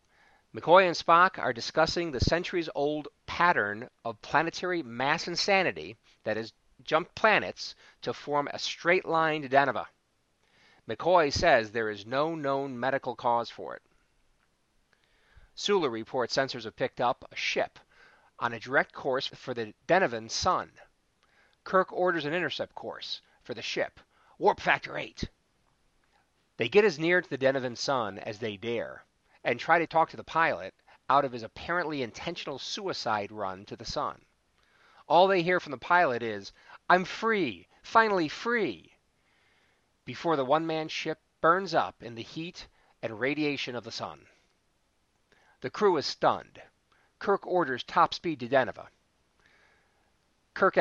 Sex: male